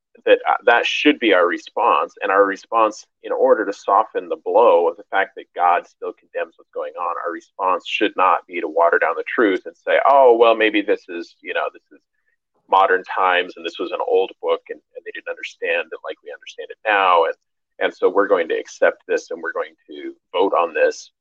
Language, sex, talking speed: English, male, 230 wpm